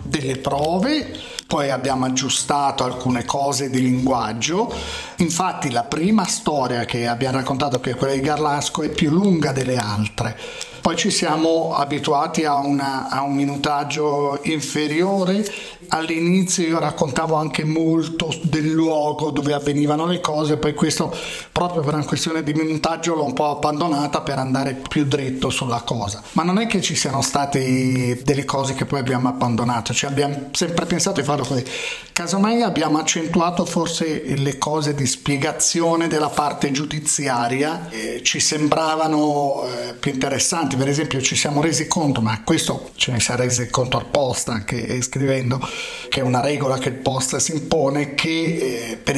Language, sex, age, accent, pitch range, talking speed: Italian, male, 40-59, native, 130-160 Hz, 160 wpm